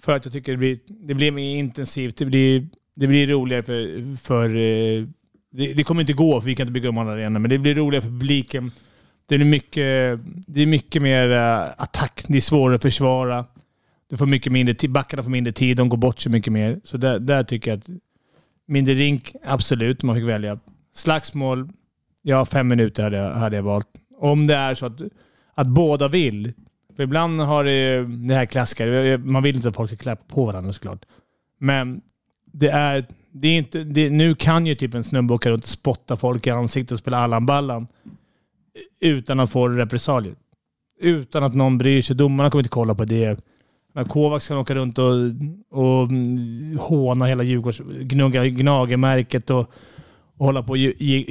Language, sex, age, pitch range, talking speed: English, male, 30-49, 120-145 Hz, 190 wpm